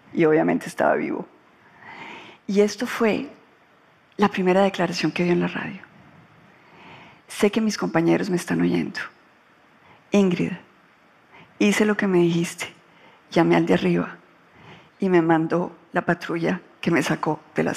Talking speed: 140 wpm